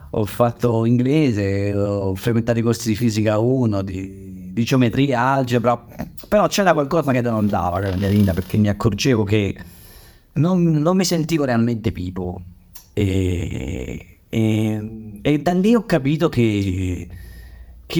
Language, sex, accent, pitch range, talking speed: Italian, male, native, 95-145 Hz, 135 wpm